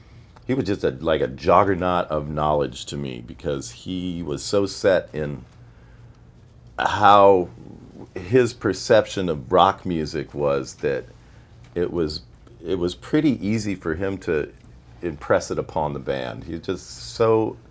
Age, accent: 50-69, American